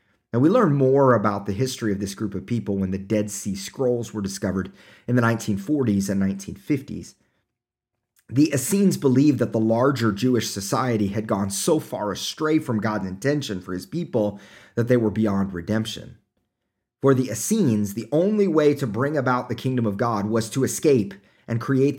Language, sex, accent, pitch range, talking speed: English, male, American, 105-130 Hz, 180 wpm